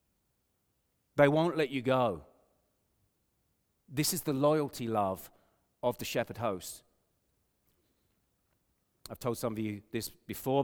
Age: 40-59